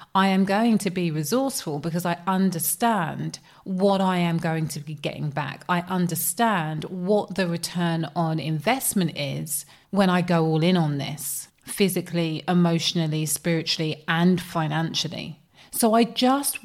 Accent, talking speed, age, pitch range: British, 145 wpm, 30-49, 165-200 Hz